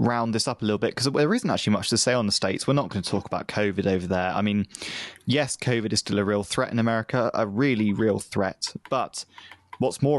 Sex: male